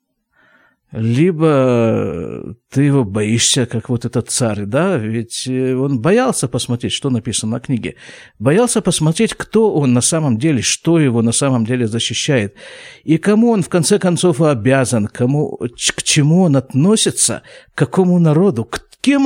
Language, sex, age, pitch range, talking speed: Russian, male, 50-69, 120-170 Hz, 145 wpm